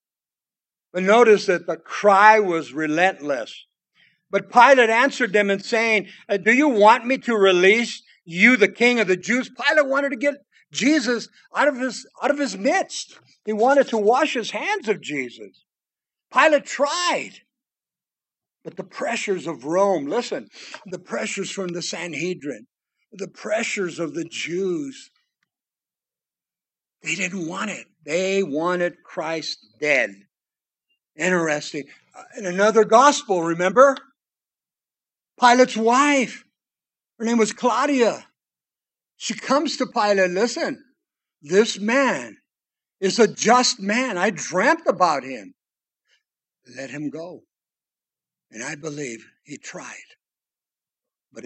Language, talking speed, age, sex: English, 125 wpm, 60-79, male